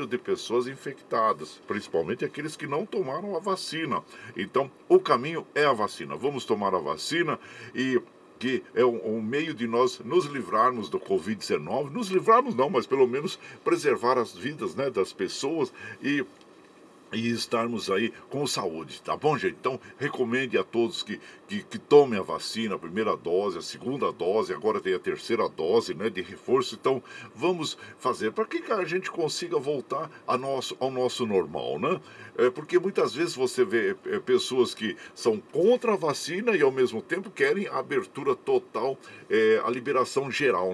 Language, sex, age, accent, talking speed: Portuguese, male, 60-79, Brazilian, 170 wpm